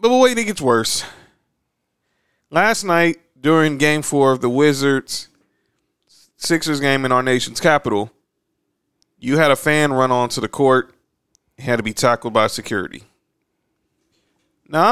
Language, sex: English, male